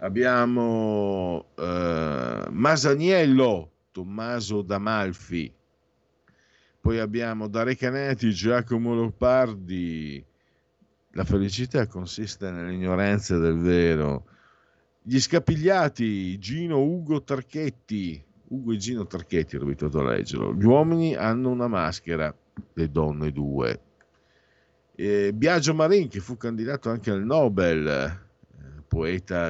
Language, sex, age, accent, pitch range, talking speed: Italian, male, 50-69, native, 85-125 Hz, 100 wpm